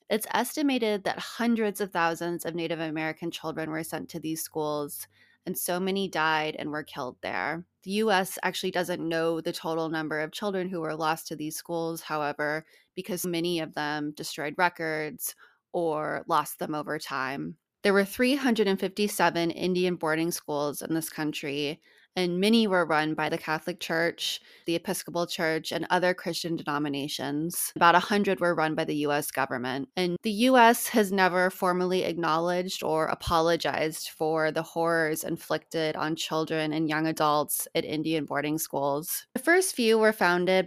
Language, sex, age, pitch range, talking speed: English, female, 20-39, 155-180 Hz, 160 wpm